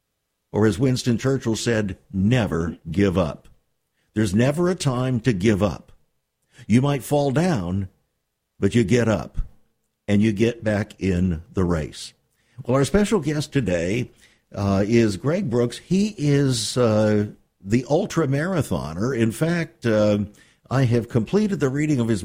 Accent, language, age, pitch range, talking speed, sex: American, English, 60-79, 105-145 Hz, 150 wpm, male